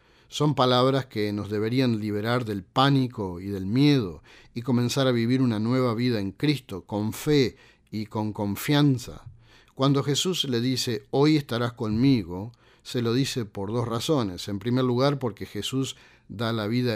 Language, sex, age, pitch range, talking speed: Spanish, male, 50-69, 100-125 Hz, 165 wpm